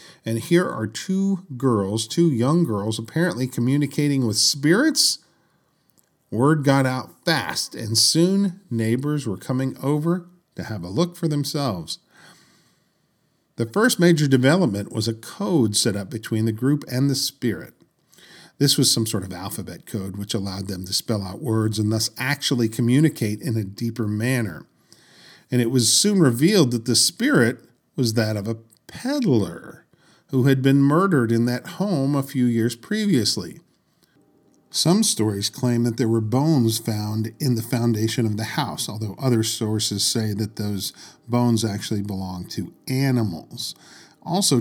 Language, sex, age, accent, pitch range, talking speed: English, male, 40-59, American, 110-145 Hz, 155 wpm